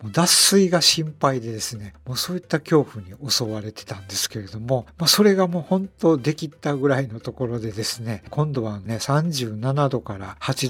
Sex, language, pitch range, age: male, Japanese, 110-160 Hz, 60-79